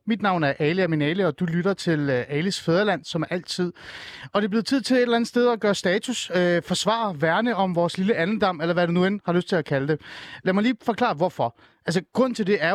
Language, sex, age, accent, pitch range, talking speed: Danish, male, 30-49, native, 160-210 Hz, 270 wpm